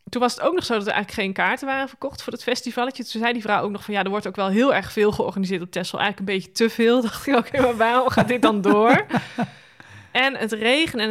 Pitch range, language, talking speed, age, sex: 185-240 Hz, Dutch, 285 wpm, 20-39, female